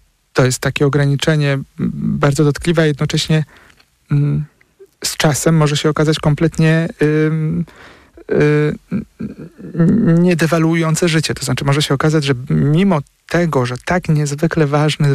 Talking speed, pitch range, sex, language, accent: 120 wpm, 140-170 Hz, male, Polish, native